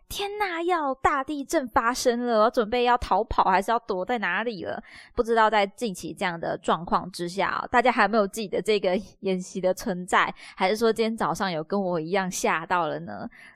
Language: Chinese